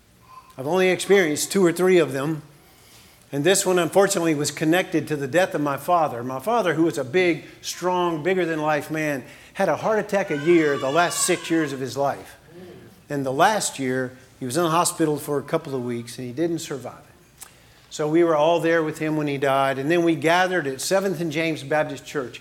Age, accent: 50-69, American